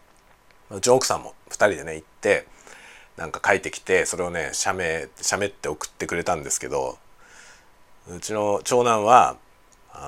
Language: Japanese